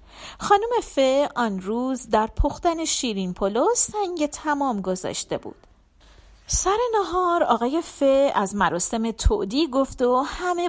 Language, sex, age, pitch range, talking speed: Persian, female, 40-59, 210-295 Hz, 125 wpm